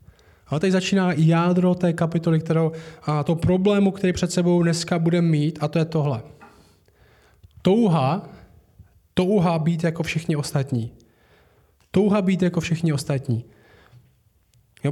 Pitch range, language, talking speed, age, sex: 155-185 Hz, Czech, 125 wpm, 20-39, male